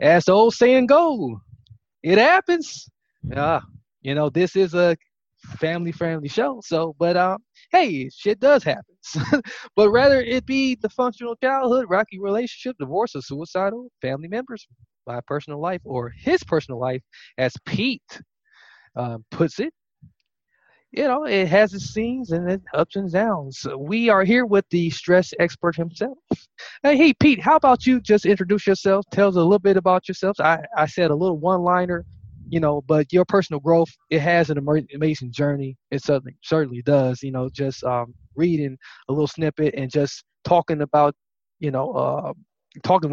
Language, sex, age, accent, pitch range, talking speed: English, male, 20-39, American, 135-205 Hz, 170 wpm